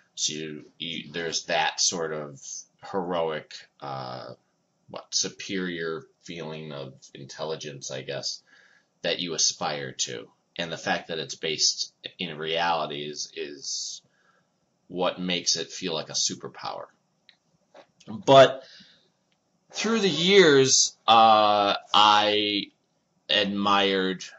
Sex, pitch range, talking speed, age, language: male, 85-105 Hz, 105 wpm, 30-49, English